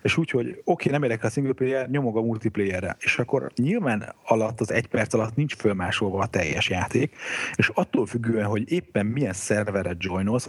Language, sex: Hungarian, male